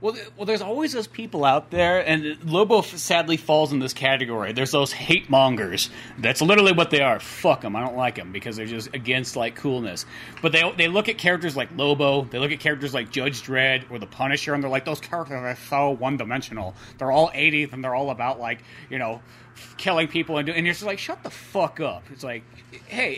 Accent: American